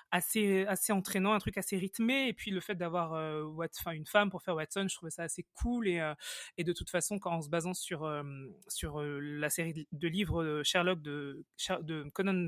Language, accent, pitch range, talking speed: French, French, 165-205 Hz, 205 wpm